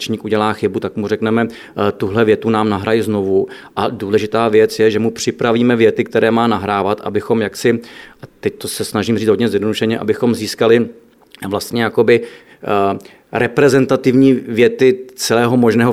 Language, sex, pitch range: Czech, male, 105-120 Hz